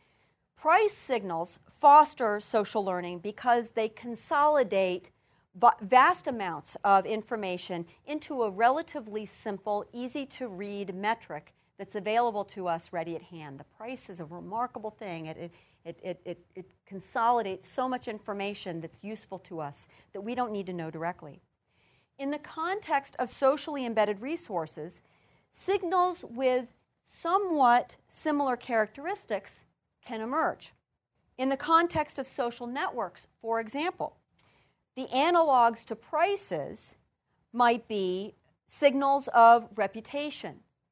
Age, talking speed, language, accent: 50-69, 125 wpm, English, American